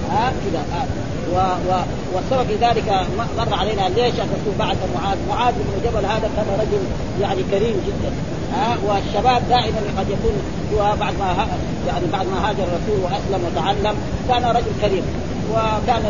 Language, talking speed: Arabic, 155 wpm